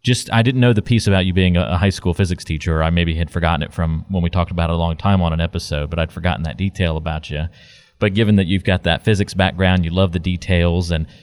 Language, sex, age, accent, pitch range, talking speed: English, male, 30-49, American, 90-110 Hz, 275 wpm